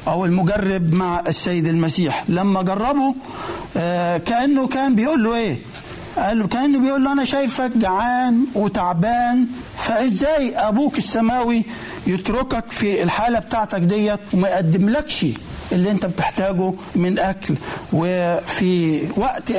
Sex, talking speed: male, 105 wpm